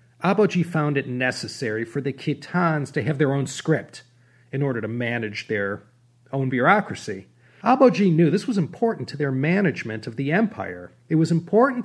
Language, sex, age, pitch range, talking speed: English, male, 40-59, 120-165 Hz, 165 wpm